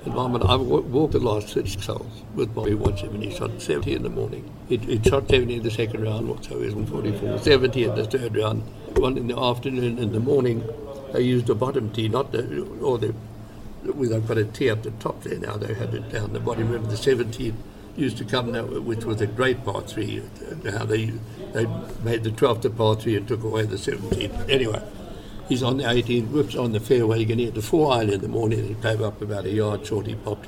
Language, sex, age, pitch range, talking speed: English, male, 60-79, 105-120 Hz, 230 wpm